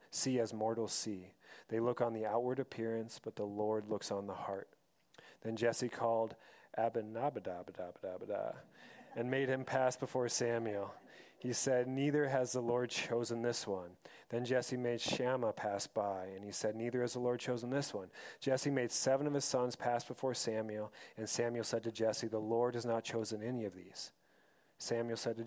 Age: 40-59